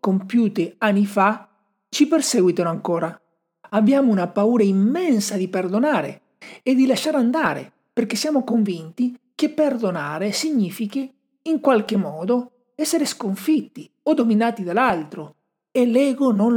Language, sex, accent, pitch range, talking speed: Italian, male, native, 190-245 Hz, 120 wpm